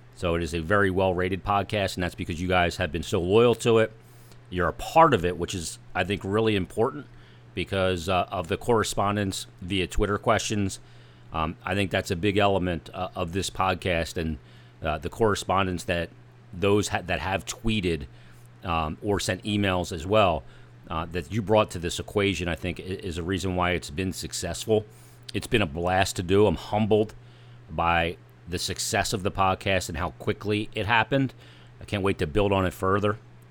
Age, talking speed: 40-59, 190 wpm